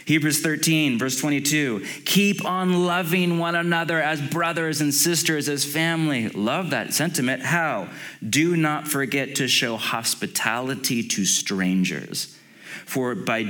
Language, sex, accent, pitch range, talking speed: English, male, American, 95-130 Hz, 130 wpm